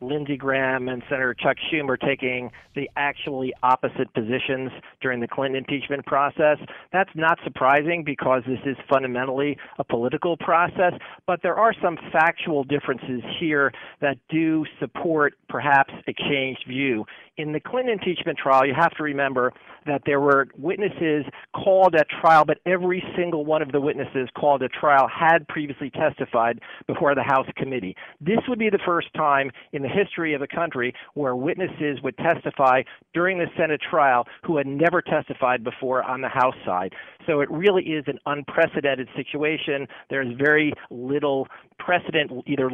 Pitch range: 130-160 Hz